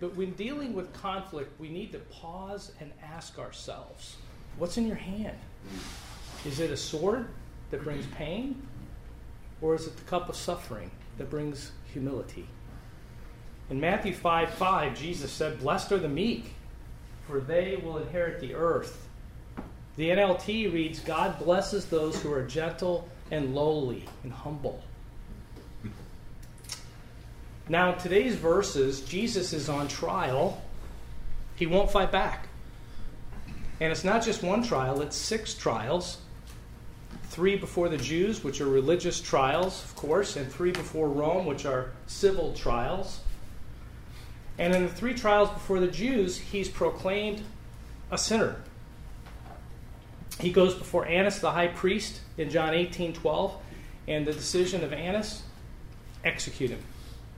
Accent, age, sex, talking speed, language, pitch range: American, 40-59, male, 135 wpm, English, 135-190 Hz